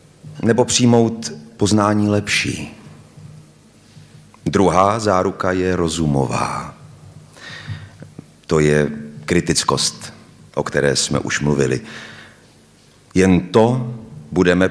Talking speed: 80 wpm